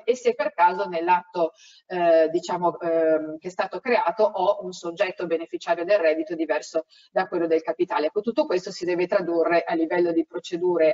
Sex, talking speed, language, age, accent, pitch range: female, 180 wpm, Italian, 40-59, native, 165-215 Hz